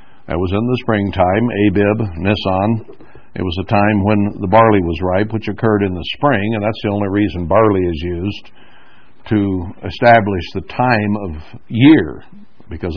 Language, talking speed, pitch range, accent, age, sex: English, 165 wpm, 90-110 Hz, American, 60-79, male